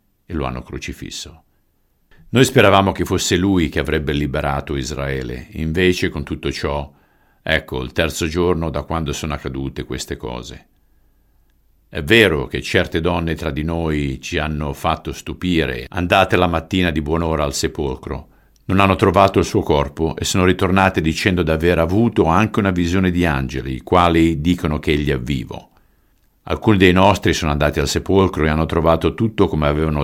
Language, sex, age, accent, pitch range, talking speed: Italian, male, 50-69, native, 70-90 Hz, 165 wpm